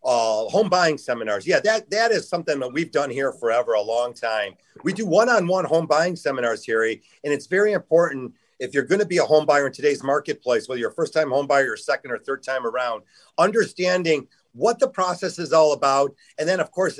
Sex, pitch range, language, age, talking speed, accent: male, 140-185 Hz, English, 50-69, 220 wpm, American